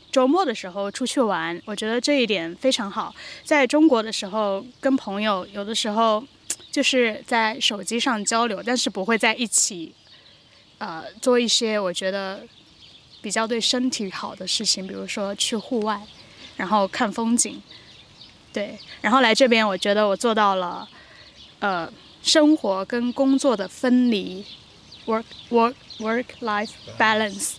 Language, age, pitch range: English, 10-29, 205-250 Hz